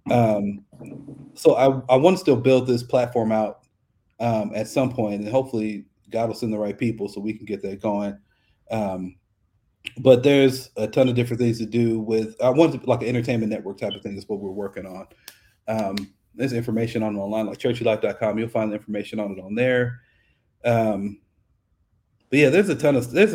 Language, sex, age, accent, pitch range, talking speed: English, male, 40-59, American, 110-130 Hz, 200 wpm